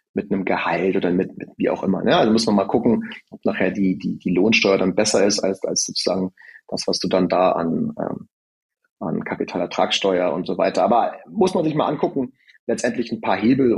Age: 30-49